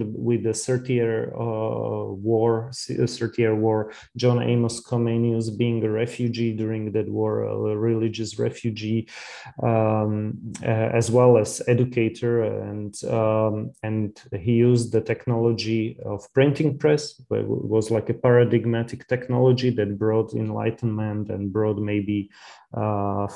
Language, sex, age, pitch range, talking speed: English, male, 30-49, 110-120 Hz, 125 wpm